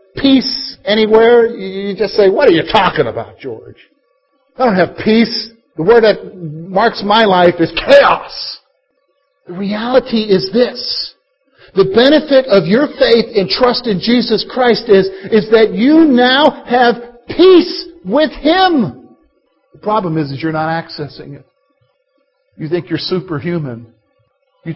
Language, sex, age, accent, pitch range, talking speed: English, male, 50-69, American, 165-235 Hz, 145 wpm